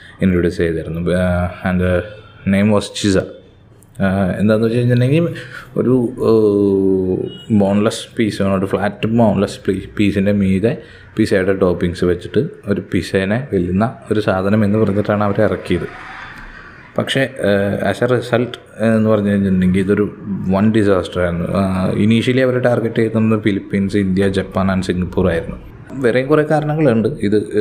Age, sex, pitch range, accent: 20-39, male, 95-110 Hz, native